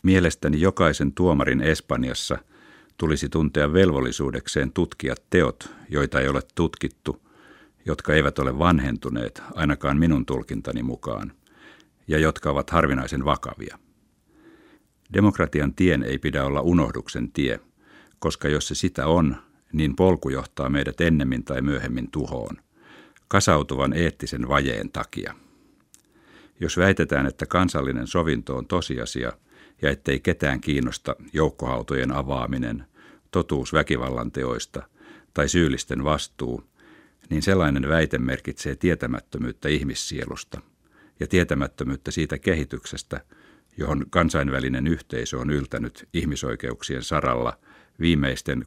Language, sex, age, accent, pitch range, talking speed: Finnish, male, 60-79, native, 65-85 Hz, 105 wpm